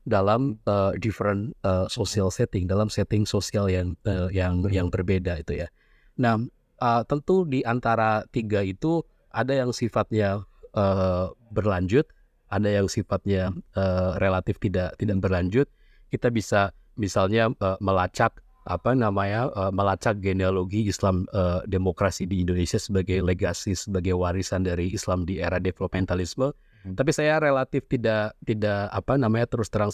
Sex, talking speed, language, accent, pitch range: male, 140 wpm, Indonesian, native, 95-110 Hz